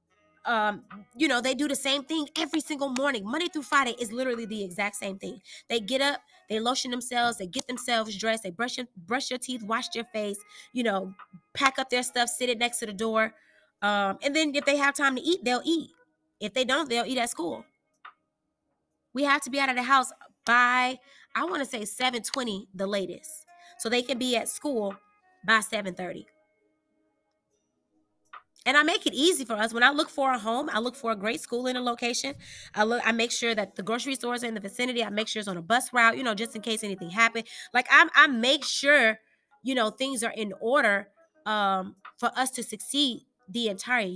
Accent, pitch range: American, 215-275 Hz